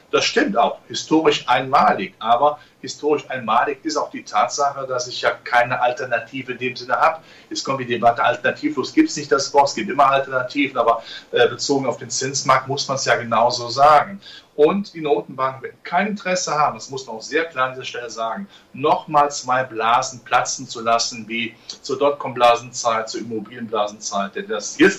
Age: 40-59